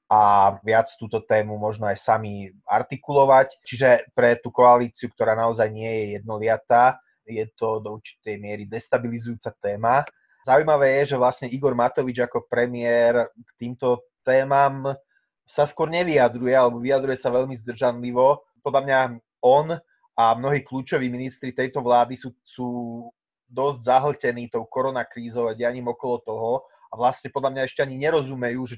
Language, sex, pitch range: Slovak, male, 110-125 Hz